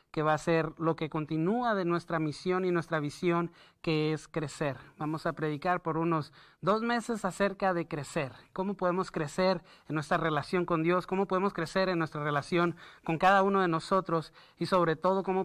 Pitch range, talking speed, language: 160-210 Hz, 190 wpm, Spanish